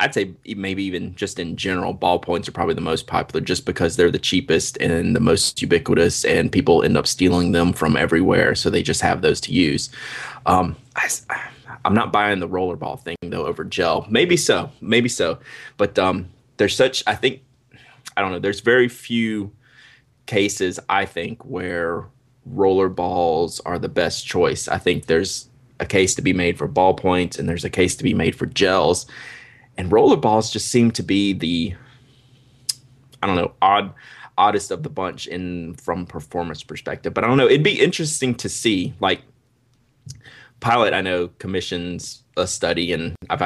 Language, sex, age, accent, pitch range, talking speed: English, male, 20-39, American, 90-125 Hz, 175 wpm